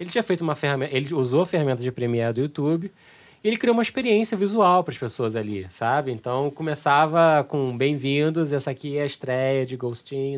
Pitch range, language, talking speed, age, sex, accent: 125-160 Hz, Portuguese, 200 wpm, 20-39, male, Brazilian